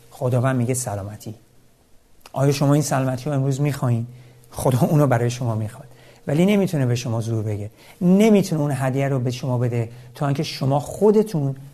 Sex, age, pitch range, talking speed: male, 50-69, 120-170 Hz, 170 wpm